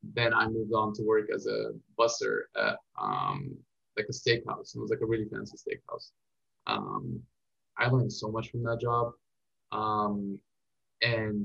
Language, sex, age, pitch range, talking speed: English, male, 20-39, 110-130 Hz, 160 wpm